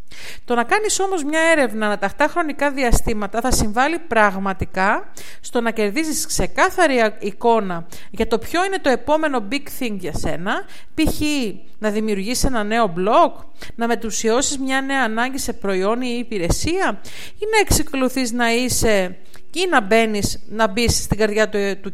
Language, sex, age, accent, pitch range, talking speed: Greek, female, 50-69, native, 210-290 Hz, 155 wpm